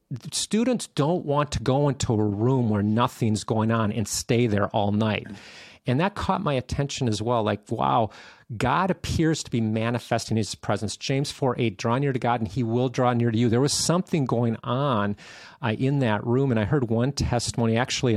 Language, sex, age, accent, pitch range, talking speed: English, male, 40-59, American, 110-140 Hz, 210 wpm